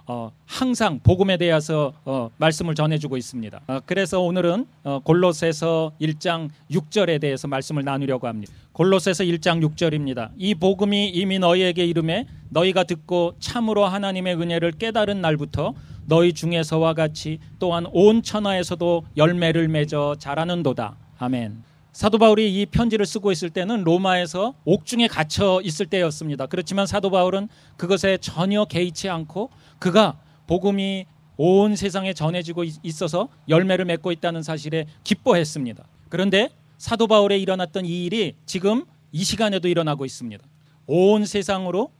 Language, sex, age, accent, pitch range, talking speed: English, male, 30-49, Korean, 155-190 Hz, 125 wpm